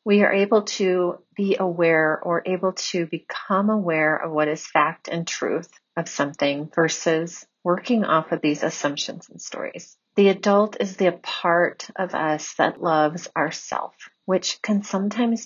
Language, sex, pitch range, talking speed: English, female, 165-190 Hz, 155 wpm